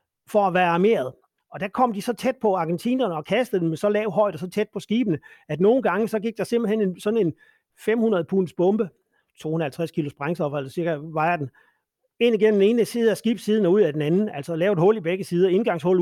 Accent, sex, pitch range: native, male, 150-205 Hz